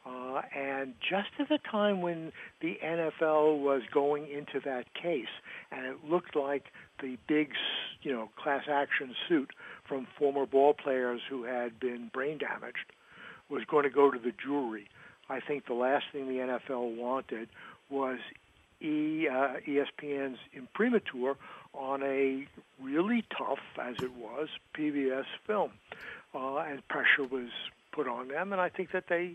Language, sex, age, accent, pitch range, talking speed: English, male, 60-79, American, 130-160 Hz, 155 wpm